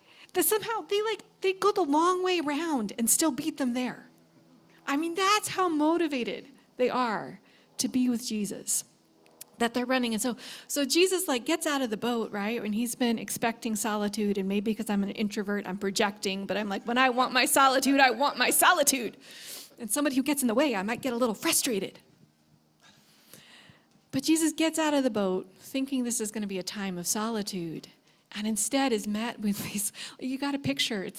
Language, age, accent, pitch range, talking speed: English, 30-49, American, 205-275 Hz, 205 wpm